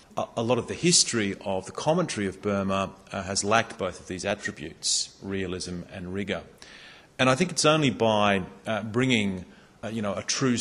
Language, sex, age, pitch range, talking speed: English, male, 40-59, 95-110 Hz, 185 wpm